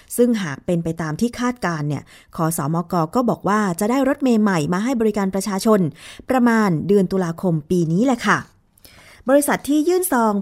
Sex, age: female, 20-39